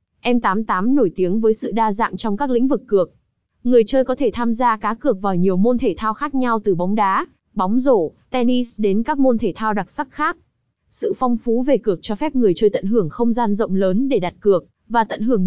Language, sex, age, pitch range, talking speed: Vietnamese, female, 20-39, 195-250 Hz, 240 wpm